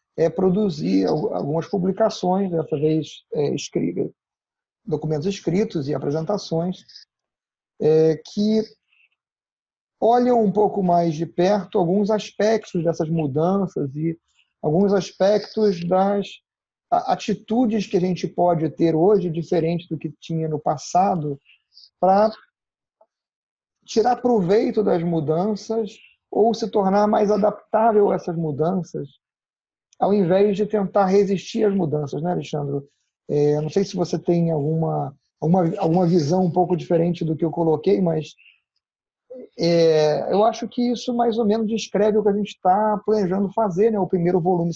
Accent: Brazilian